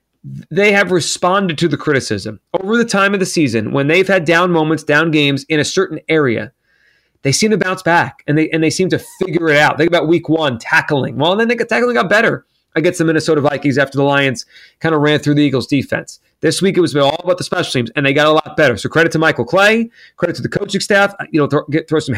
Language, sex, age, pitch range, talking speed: English, male, 30-49, 145-175 Hz, 255 wpm